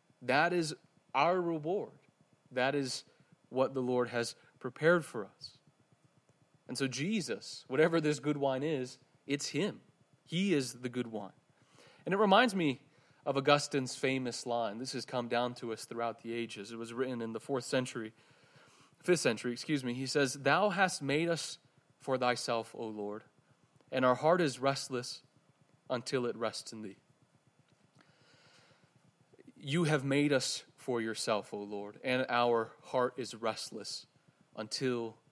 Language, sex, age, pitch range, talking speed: English, male, 30-49, 125-155 Hz, 155 wpm